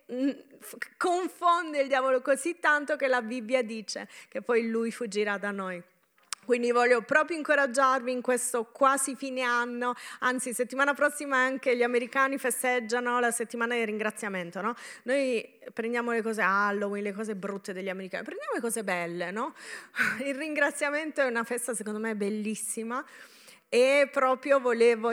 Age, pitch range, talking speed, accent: 30-49, 215-260 Hz, 150 wpm, native